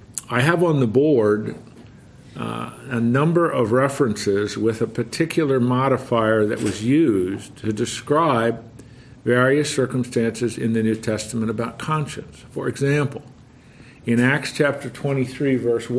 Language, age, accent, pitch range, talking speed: English, 50-69, American, 115-135 Hz, 130 wpm